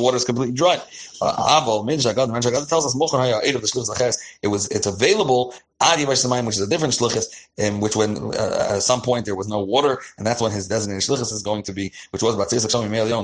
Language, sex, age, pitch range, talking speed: English, male, 30-49, 105-125 Hz, 200 wpm